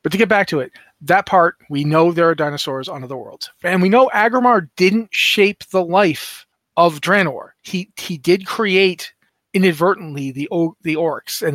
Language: English